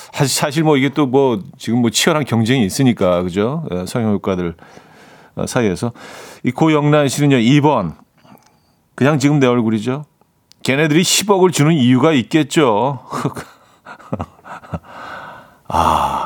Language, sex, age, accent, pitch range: Korean, male, 40-59, native, 105-155 Hz